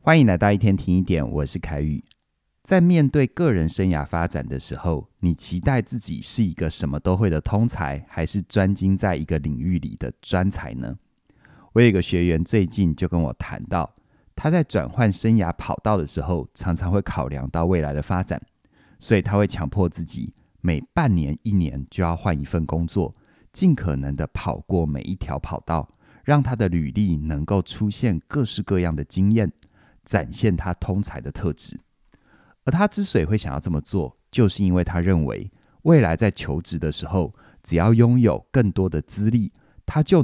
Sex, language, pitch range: male, Chinese, 80-110 Hz